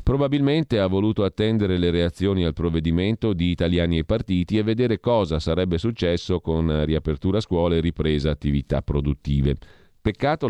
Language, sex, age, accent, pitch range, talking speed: Italian, male, 40-59, native, 75-100 Hz, 145 wpm